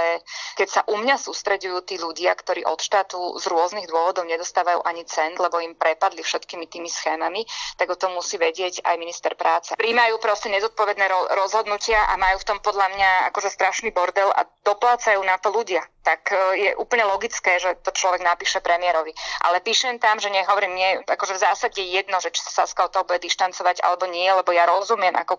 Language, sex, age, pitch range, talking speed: Slovak, female, 20-39, 180-205 Hz, 190 wpm